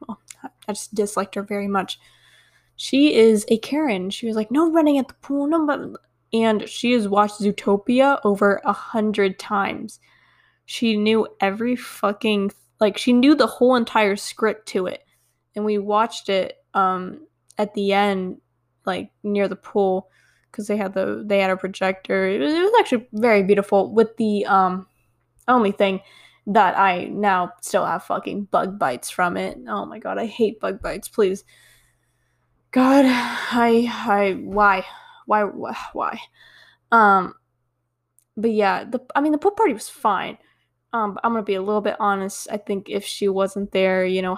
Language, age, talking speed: English, 10-29, 170 wpm